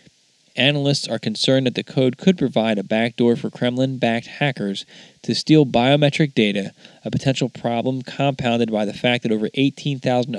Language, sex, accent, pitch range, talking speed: English, male, American, 115-140 Hz, 155 wpm